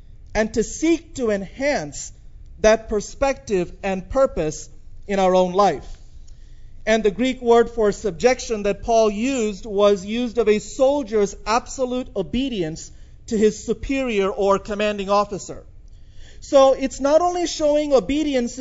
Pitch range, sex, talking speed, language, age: 185-255 Hz, male, 130 wpm, English, 40-59